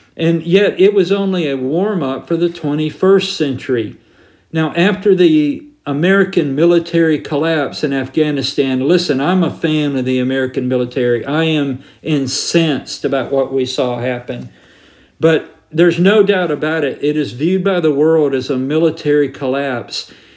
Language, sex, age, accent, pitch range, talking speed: English, male, 50-69, American, 135-165 Hz, 150 wpm